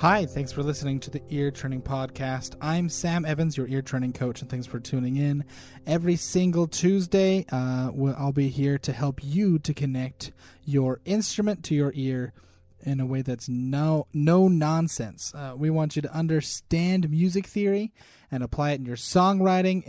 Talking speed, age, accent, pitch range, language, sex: 180 wpm, 30-49, American, 125-170 Hz, English, male